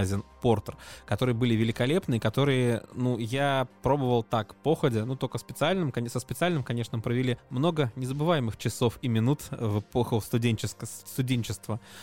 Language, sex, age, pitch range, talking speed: Russian, male, 20-39, 115-145 Hz, 125 wpm